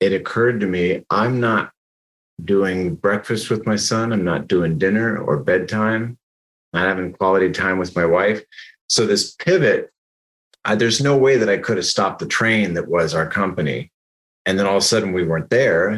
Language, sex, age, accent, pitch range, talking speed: English, male, 30-49, American, 85-110 Hz, 195 wpm